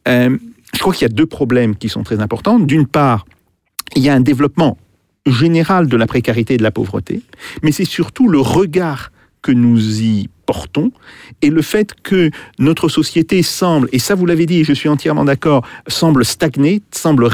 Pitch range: 125-180 Hz